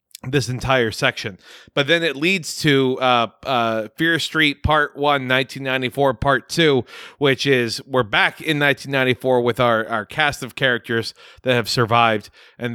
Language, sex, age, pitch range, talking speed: English, male, 30-49, 115-140 Hz, 155 wpm